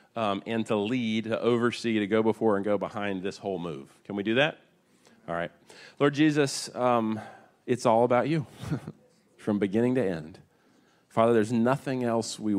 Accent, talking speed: American, 175 wpm